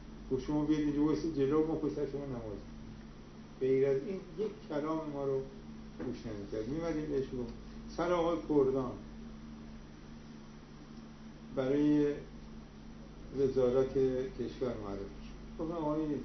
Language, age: Persian, 60-79